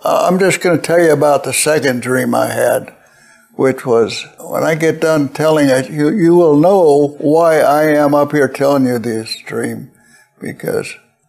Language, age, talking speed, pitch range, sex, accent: English, 60-79, 180 wpm, 130-155 Hz, male, American